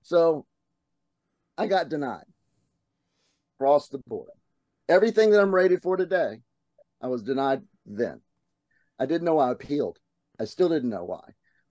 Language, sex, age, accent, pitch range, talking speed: English, male, 40-59, American, 120-150 Hz, 145 wpm